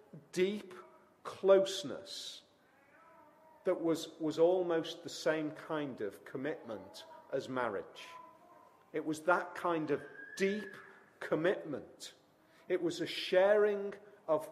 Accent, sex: British, male